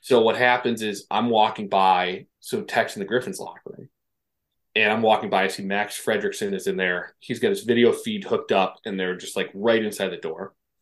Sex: male